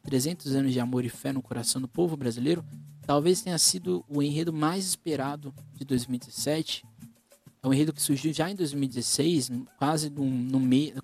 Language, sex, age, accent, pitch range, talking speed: Portuguese, male, 20-39, Brazilian, 130-175 Hz, 175 wpm